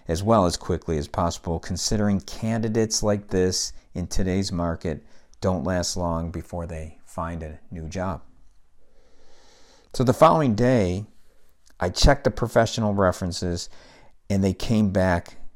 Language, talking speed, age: English, 135 wpm, 50-69